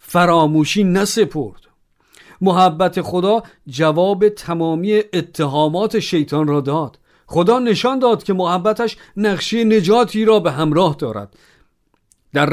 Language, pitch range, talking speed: Persian, 155-220 Hz, 105 wpm